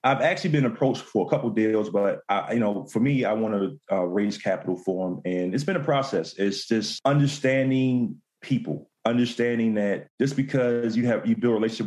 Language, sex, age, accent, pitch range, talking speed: English, male, 30-49, American, 105-125 Hz, 210 wpm